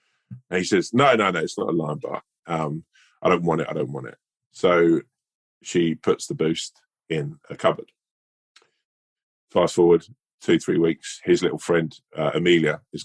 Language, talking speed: English, 180 wpm